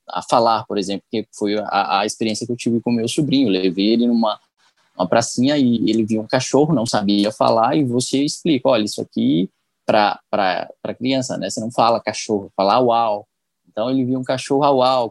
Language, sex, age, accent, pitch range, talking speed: Portuguese, male, 20-39, Brazilian, 115-145 Hz, 205 wpm